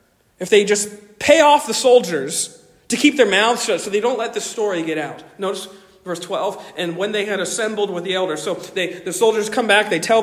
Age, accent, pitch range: 40-59, American, 195-245 Hz